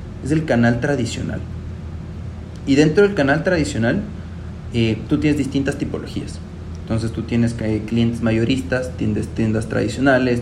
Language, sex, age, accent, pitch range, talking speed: Spanish, male, 30-49, Mexican, 95-135 Hz, 140 wpm